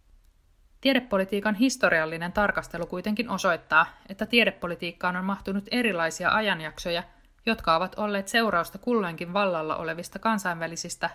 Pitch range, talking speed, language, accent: 160-200 Hz, 100 wpm, Finnish, native